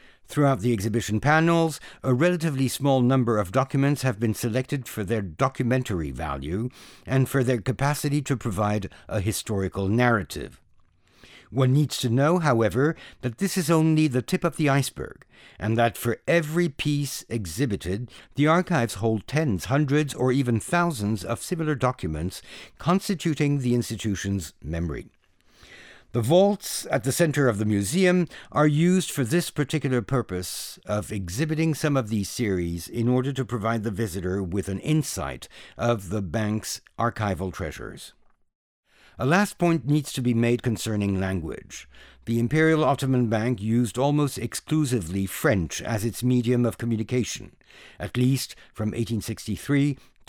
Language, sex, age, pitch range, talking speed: English, male, 60-79, 105-145 Hz, 145 wpm